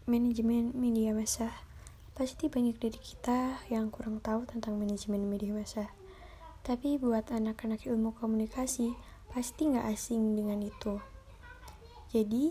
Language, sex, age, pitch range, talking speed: Indonesian, female, 20-39, 220-245 Hz, 120 wpm